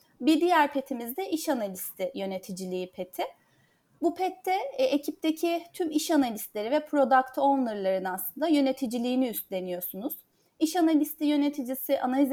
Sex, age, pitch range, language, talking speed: female, 30-49, 220-285 Hz, Turkish, 115 wpm